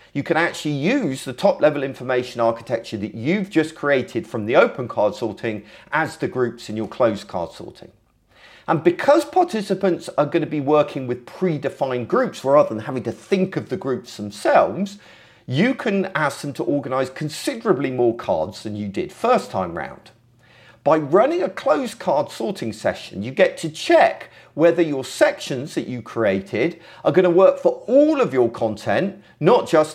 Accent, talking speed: British, 175 wpm